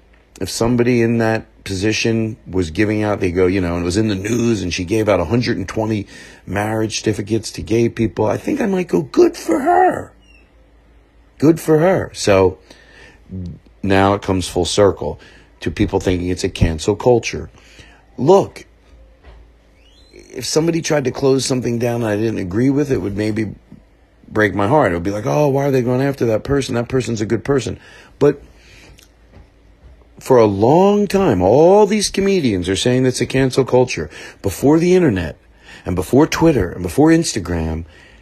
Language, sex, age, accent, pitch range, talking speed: English, male, 40-59, American, 95-130 Hz, 175 wpm